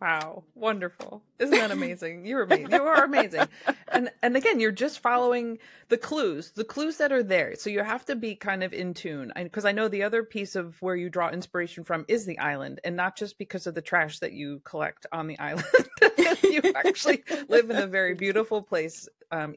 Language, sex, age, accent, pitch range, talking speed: English, female, 30-49, American, 165-225 Hz, 205 wpm